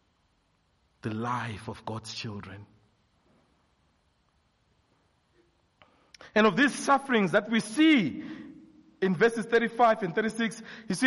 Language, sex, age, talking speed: English, male, 50-69, 105 wpm